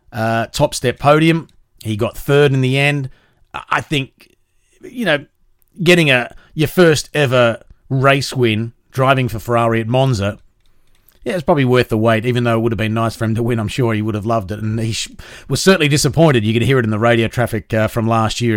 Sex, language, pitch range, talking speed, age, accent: male, English, 115-140 Hz, 215 wpm, 30-49, Australian